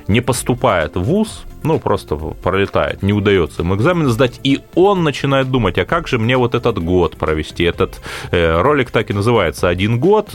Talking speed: 185 wpm